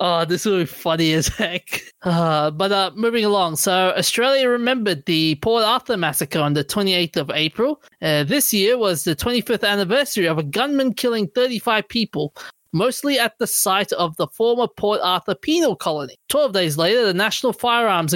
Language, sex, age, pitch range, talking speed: English, male, 20-39, 165-225 Hz, 180 wpm